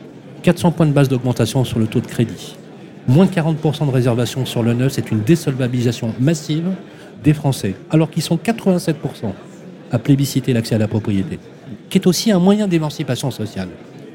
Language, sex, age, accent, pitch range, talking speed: French, male, 40-59, French, 115-155 Hz, 175 wpm